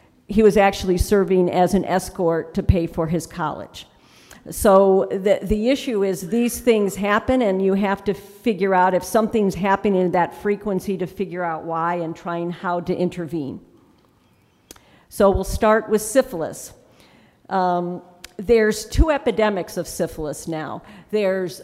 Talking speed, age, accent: 150 wpm, 50-69, American